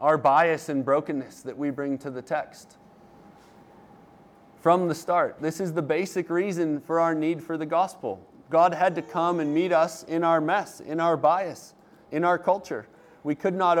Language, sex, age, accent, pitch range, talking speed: English, male, 30-49, American, 140-175 Hz, 185 wpm